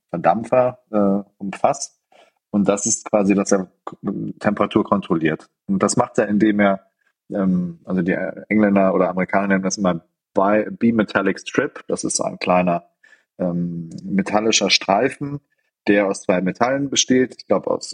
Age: 30-49